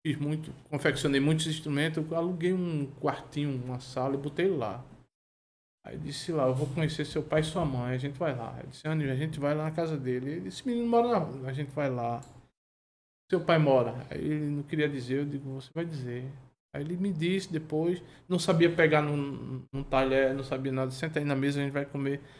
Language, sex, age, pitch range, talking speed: Portuguese, male, 20-39, 135-170 Hz, 220 wpm